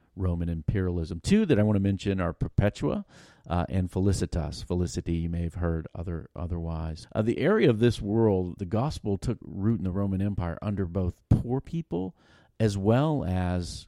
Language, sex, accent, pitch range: English, male, American, 90-110 Hz